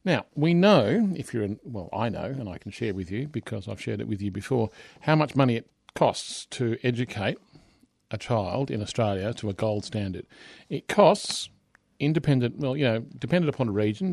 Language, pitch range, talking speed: English, 105-135 Hz, 200 wpm